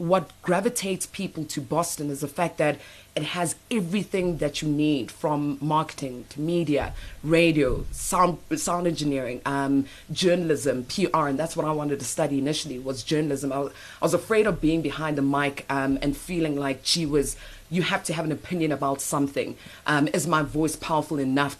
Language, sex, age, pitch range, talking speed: English, female, 20-39, 140-160 Hz, 180 wpm